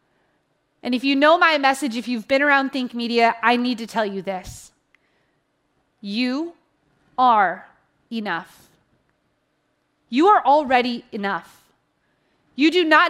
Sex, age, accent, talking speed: female, 30-49, American, 130 wpm